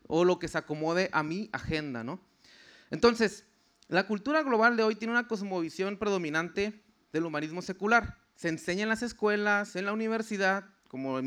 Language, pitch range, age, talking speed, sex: Spanish, 165-215 Hz, 30-49, 165 wpm, male